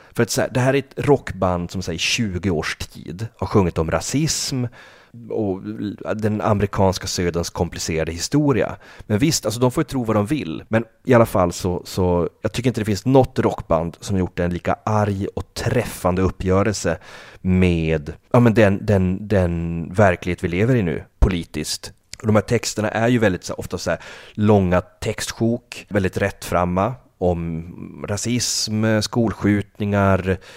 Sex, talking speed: male, 165 wpm